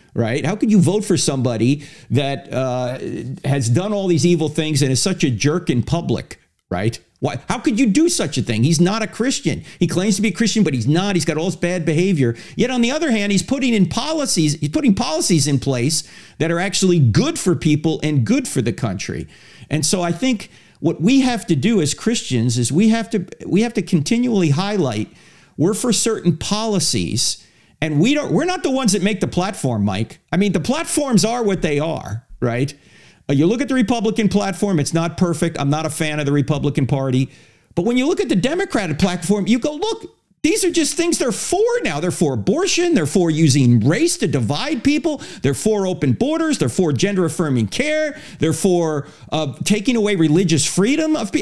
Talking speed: 210 wpm